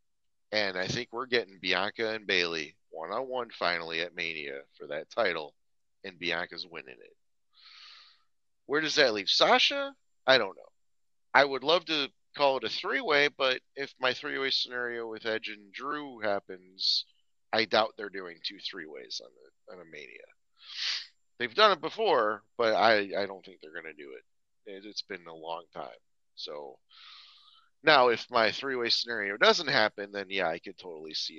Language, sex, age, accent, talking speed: English, male, 30-49, American, 170 wpm